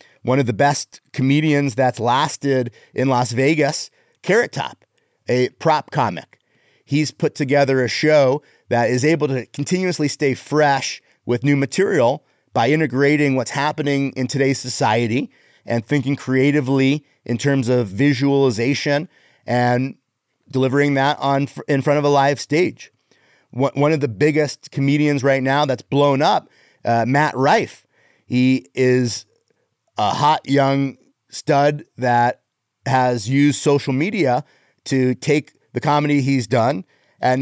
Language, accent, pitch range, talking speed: English, American, 125-150 Hz, 135 wpm